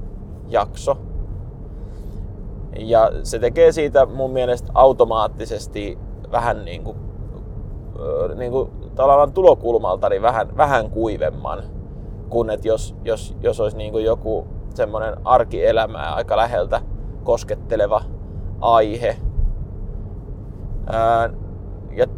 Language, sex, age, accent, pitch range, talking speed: Finnish, male, 20-39, native, 95-120 Hz, 90 wpm